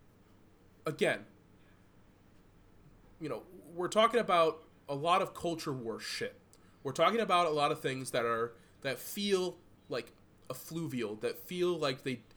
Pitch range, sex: 100-160 Hz, male